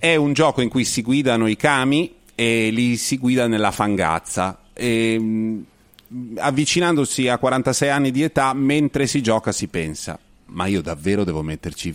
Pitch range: 95-125 Hz